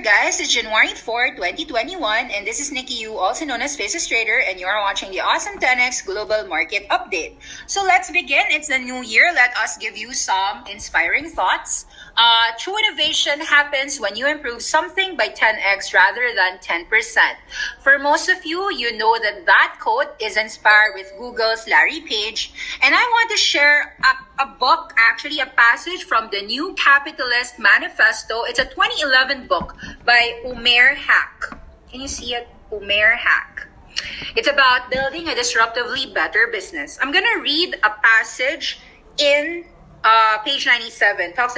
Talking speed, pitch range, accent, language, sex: 165 wpm, 225-335 Hz, Filipino, English, female